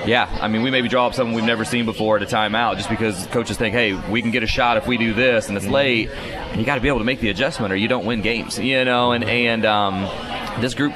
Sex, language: male, English